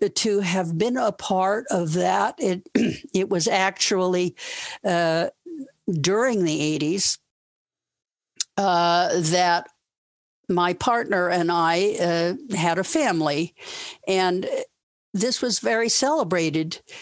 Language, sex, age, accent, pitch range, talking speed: English, female, 60-79, American, 180-235 Hz, 105 wpm